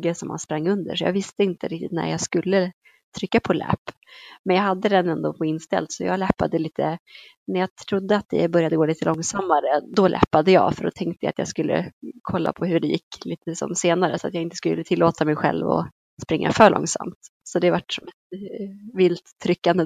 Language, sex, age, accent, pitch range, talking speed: Swedish, female, 20-39, native, 165-190 Hz, 220 wpm